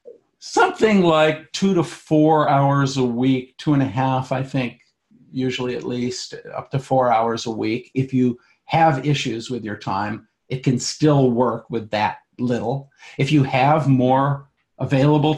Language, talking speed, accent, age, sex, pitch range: English, 165 wpm, American, 50-69, male, 120-150 Hz